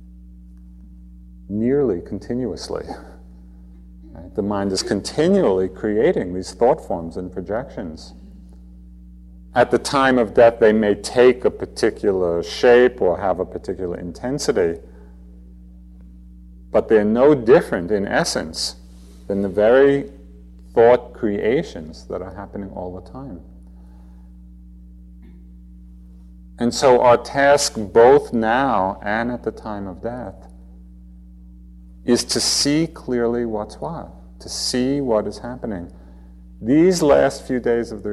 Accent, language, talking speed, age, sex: American, English, 115 wpm, 40-59, male